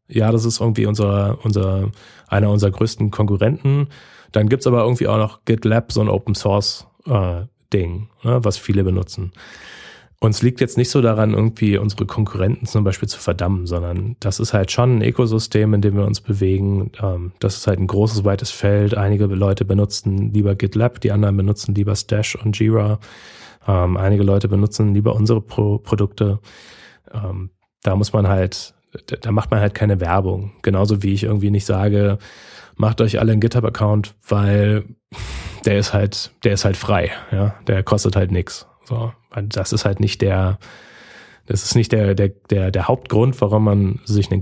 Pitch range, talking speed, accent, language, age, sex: 100-110 Hz, 180 wpm, German, German, 30-49, male